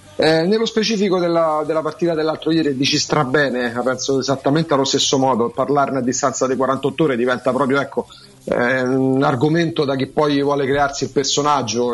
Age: 40-59